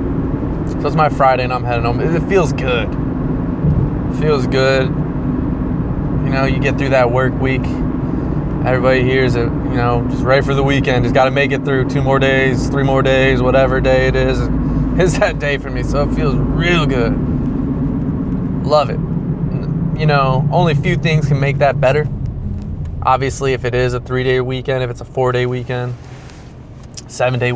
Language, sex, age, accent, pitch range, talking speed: English, male, 20-39, American, 125-145 Hz, 180 wpm